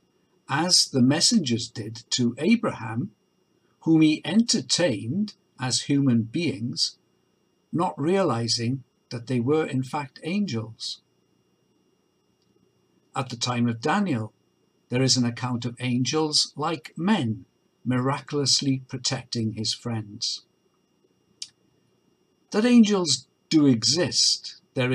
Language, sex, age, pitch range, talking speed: English, male, 60-79, 120-160 Hz, 100 wpm